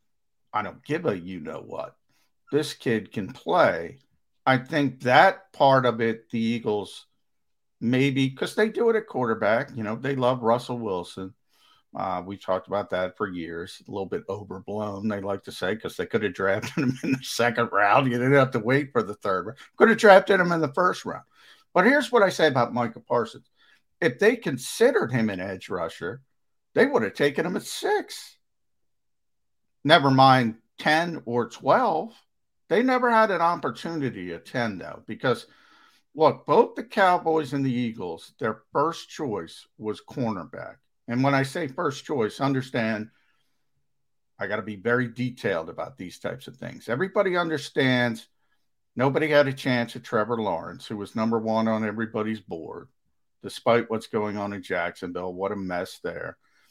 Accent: American